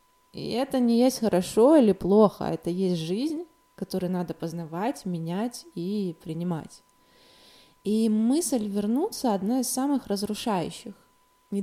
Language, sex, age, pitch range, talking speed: Russian, female, 20-39, 170-225 Hz, 125 wpm